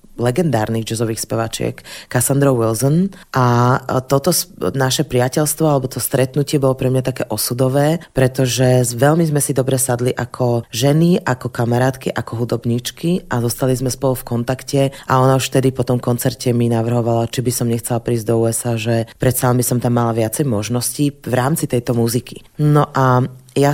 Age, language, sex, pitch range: 30-49, Slovak, female, 125-145 Hz